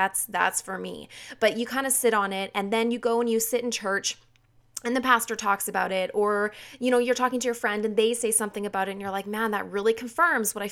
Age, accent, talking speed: 20-39, American, 275 wpm